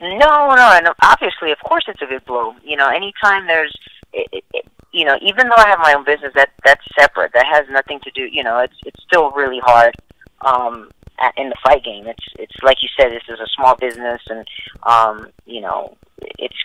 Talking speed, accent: 220 wpm, American